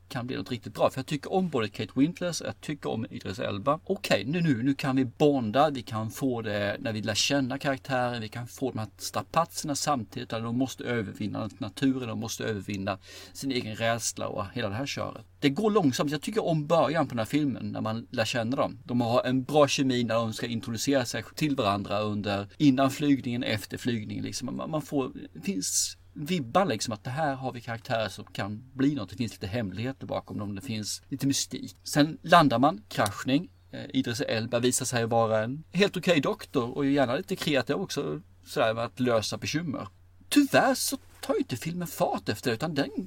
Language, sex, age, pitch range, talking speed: Swedish, male, 40-59, 110-150 Hz, 210 wpm